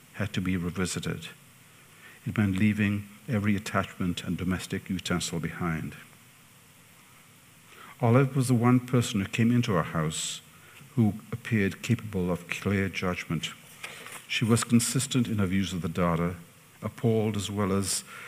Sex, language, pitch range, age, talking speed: male, English, 90-115 Hz, 50-69, 140 wpm